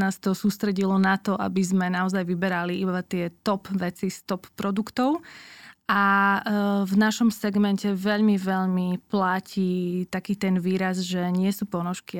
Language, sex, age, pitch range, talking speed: Slovak, female, 20-39, 185-205 Hz, 150 wpm